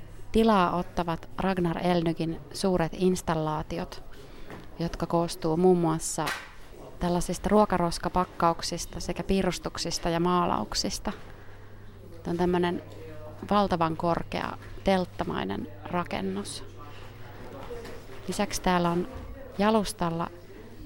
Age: 30-49